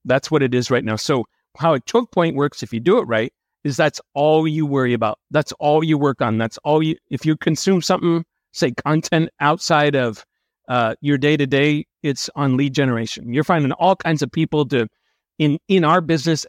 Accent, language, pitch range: American, English, 130-165 Hz